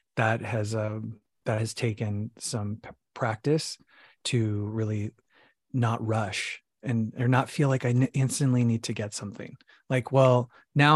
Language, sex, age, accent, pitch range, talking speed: English, male, 30-49, American, 115-145 Hz, 150 wpm